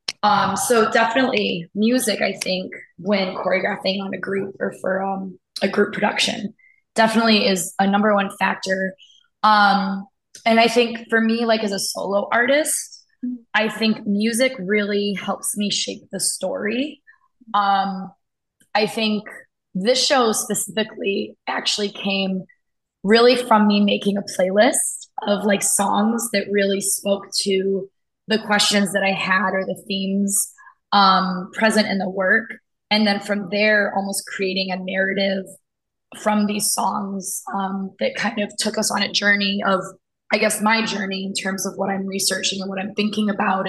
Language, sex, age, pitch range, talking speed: English, female, 20-39, 195-215 Hz, 155 wpm